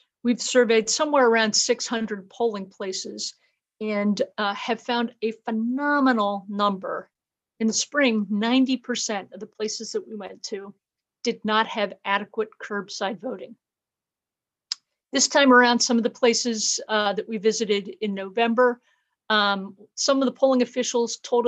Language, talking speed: English, 140 wpm